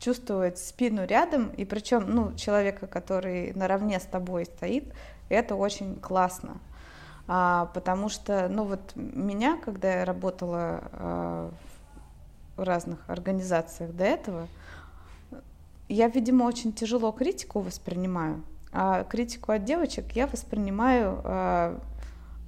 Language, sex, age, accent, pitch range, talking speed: Russian, female, 20-39, native, 175-240 Hz, 115 wpm